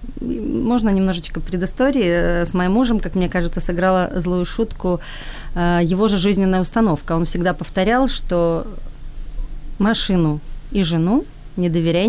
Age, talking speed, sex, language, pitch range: 30-49, 125 wpm, female, Ukrainian, 165-205 Hz